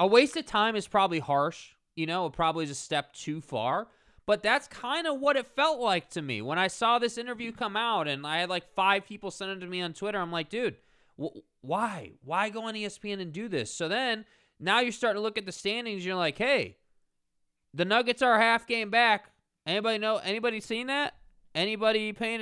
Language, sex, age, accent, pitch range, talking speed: English, male, 20-39, American, 160-220 Hz, 230 wpm